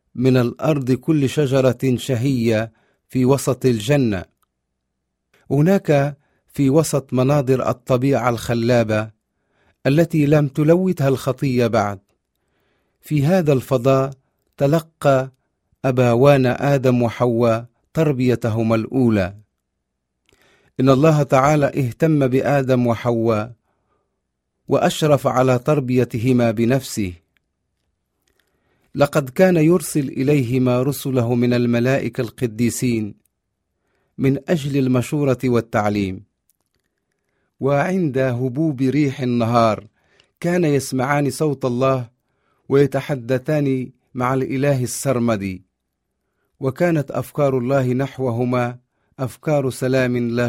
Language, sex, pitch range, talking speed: Arabic, male, 115-140 Hz, 85 wpm